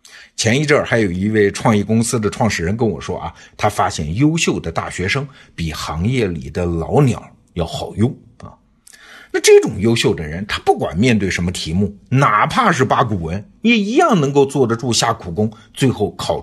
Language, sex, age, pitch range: Chinese, male, 50-69, 90-140 Hz